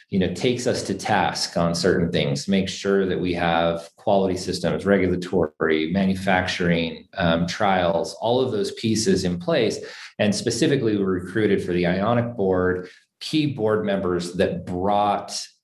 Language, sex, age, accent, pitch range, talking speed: English, male, 40-59, American, 90-115 Hz, 150 wpm